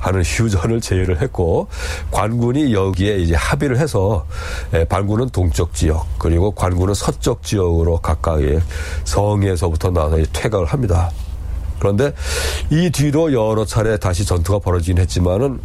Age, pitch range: 40-59, 80-110 Hz